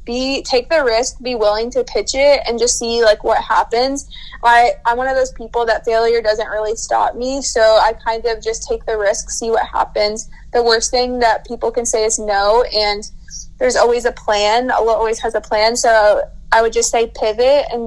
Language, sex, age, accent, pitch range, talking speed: English, female, 20-39, American, 215-245 Hz, 215 wpm